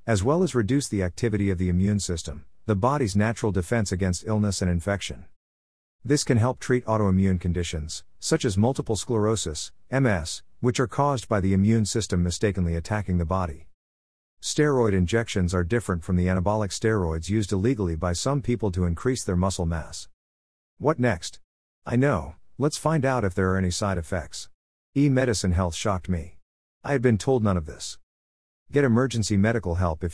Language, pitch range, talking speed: English, 85-120 Hz, 175 wpm